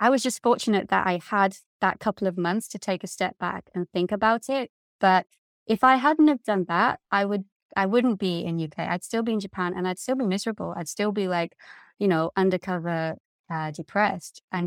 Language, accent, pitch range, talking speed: English, British, 180-230 Hz, 230 wpm